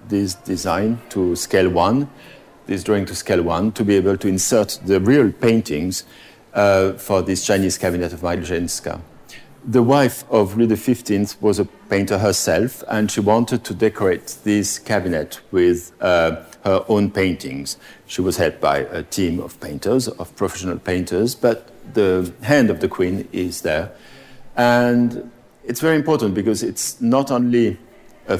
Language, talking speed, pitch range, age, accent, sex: English, 155 wpm, 95-120 Hz, 50-69, French, male